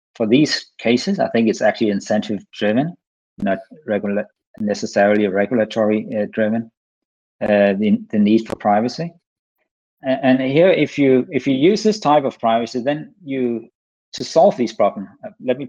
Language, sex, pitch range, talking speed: English, male, 110-130 Hz, 150 wpm